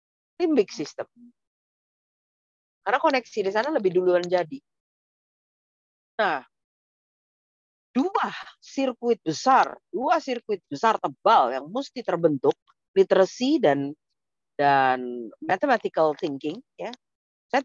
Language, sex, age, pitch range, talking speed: Indonesian, female, 40-59, 165-255 Hz, 90 wpm